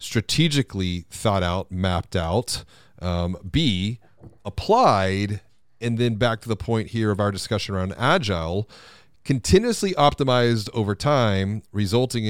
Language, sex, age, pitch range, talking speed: English, male, 40-59, 100-130 Hz, 120 wpm